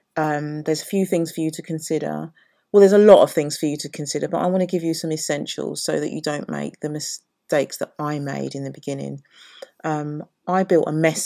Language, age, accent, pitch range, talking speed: English, 40-59, British, 155-195 Hz, 240 wpm